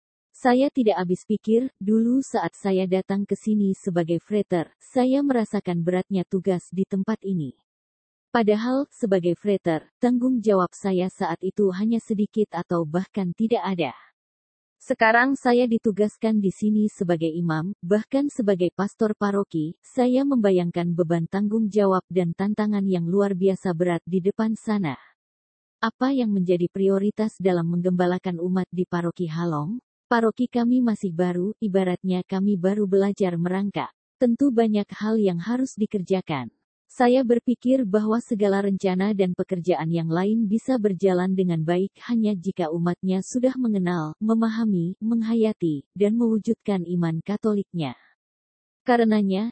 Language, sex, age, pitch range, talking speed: Indonesian, female, 20-39, 180-220 Hz, 130 wpm